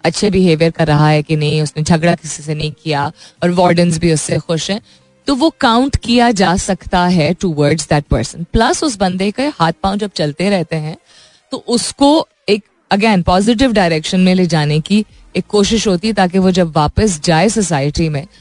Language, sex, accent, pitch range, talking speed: Hindi, female, native, 165-225 Hz, 200 wpm